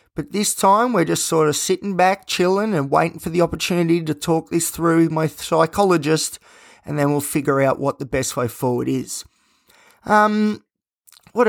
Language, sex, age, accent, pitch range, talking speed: English, male, 20-39, Australian, 140-185 Hz, 185 wpm